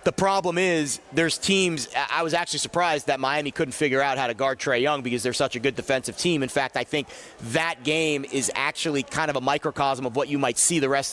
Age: 30-49